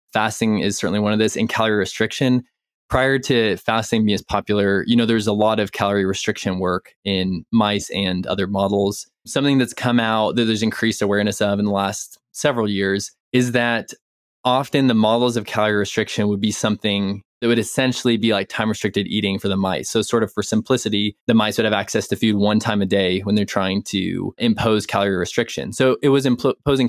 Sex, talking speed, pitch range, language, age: male, 200 wpm, 100-115 Hz, English, 20-39